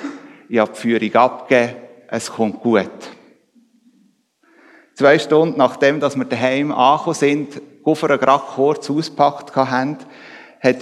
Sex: male